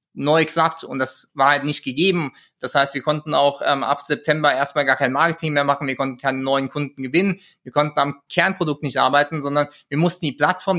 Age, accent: 20-39, German